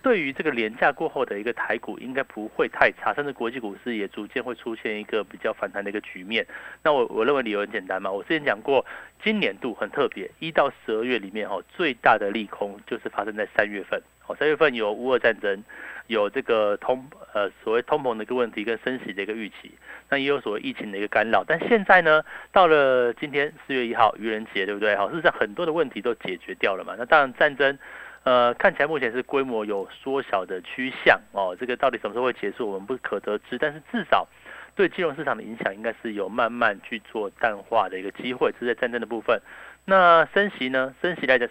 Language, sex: Chinese, male